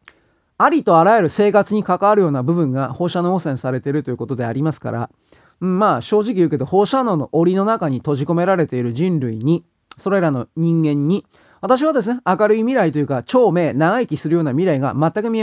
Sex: male